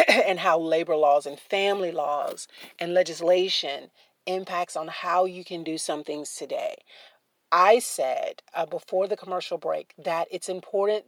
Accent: American